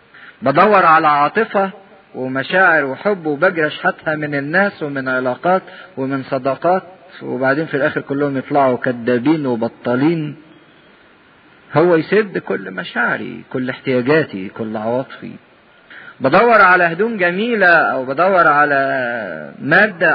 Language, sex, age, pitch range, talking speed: English, male, 50-69, 135-185 Hz, 105 wpm